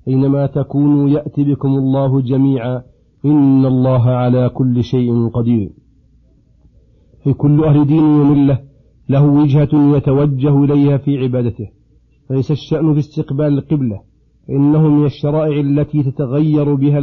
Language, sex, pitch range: Arabic, male, 130-150 Hz